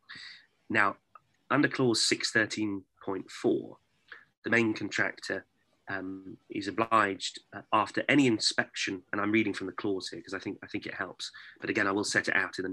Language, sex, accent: English, male, British